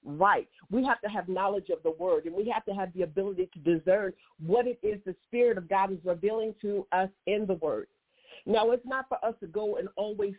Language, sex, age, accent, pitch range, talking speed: English, female, 50-69, American, 190-250 Hz, 235 wpm